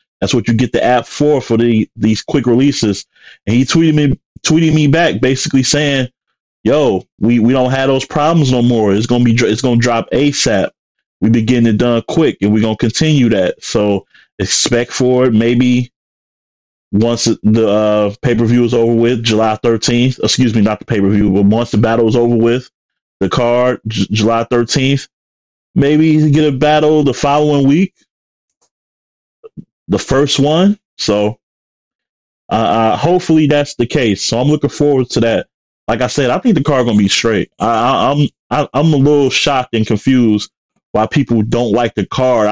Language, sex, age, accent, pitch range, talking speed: English, male, 30-49, American, 105-135 Hz, 180 wpm